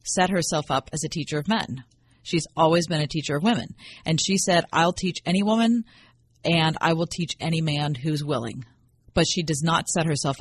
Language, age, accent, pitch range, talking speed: English, 40-59, American, 145-175 Hz, 210 wpm